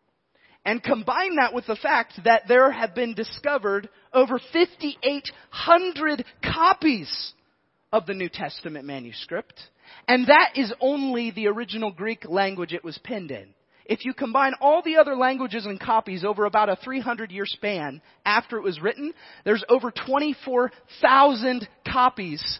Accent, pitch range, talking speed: American, 205-275 Hz, 145 wpm